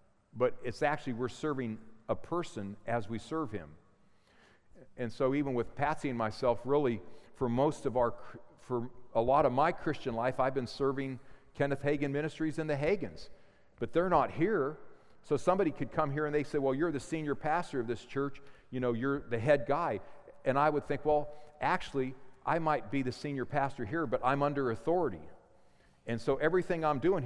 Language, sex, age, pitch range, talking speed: English, male, 50-69, 120-150 Hz, 190 wpm